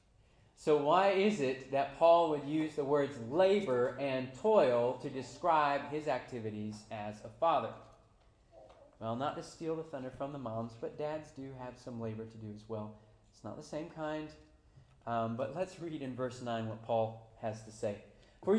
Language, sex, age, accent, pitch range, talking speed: English, male, 30-49, American, 110-165 Hz, 185 wpm